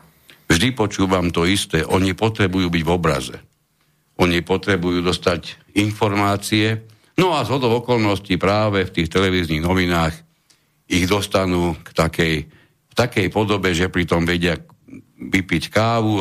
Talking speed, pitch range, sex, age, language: 125 wpm, 85-110 Hz, male, 60-79, Slovak